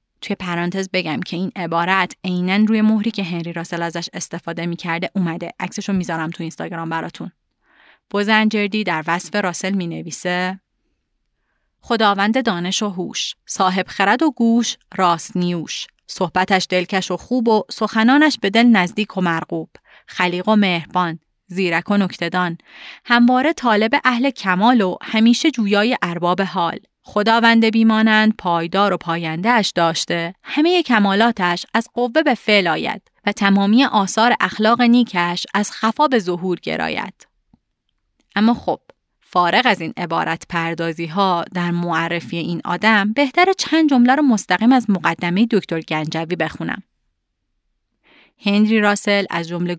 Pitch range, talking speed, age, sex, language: 175-225 Hz, 135 wpm, 30-49, female, Persian